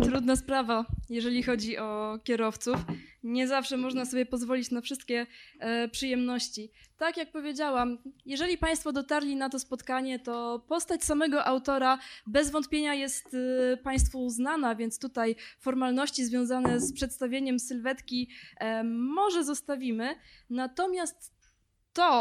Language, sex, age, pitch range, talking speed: Polish, female, 20-39, 235-285 Hz, 115 wpm